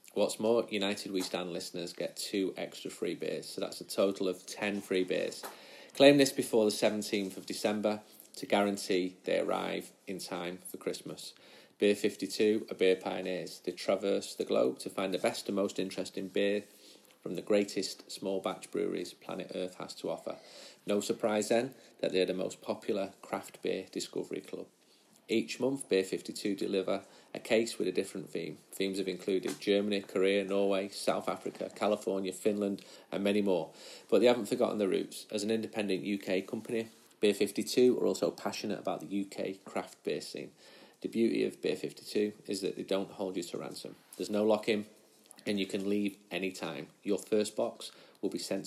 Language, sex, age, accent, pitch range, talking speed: English, male, 30-49, British, 95-105 Hz, 180 wpm